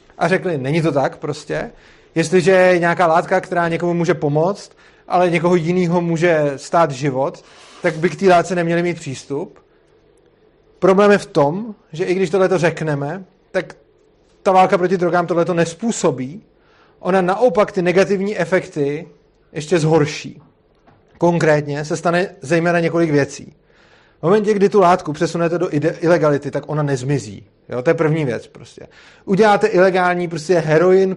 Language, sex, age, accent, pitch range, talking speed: Czech, male, 30-49, native, 155-190 Hz, 150 wpm